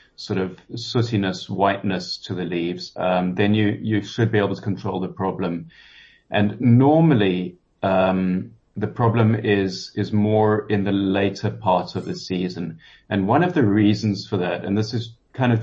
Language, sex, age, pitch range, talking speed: English, male, 30-49, 95-115 Hz, 175 wpm